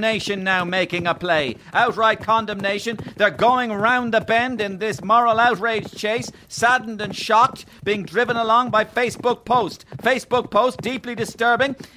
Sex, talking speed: male, 150 wpm